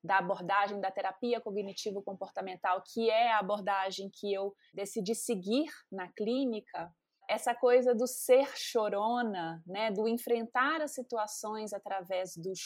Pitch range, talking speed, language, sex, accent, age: 210-290 Hz, 130 wpm, Portuguese, female, Brazilian, 20-39